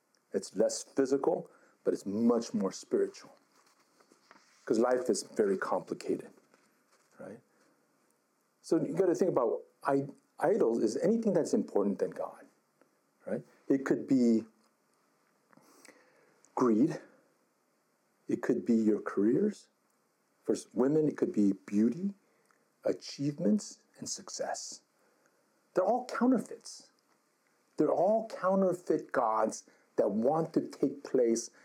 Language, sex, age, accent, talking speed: English, male, 50-69, American, 110 wpm